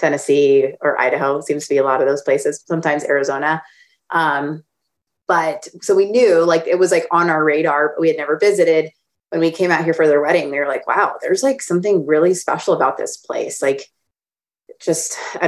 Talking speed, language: 205 wpm, English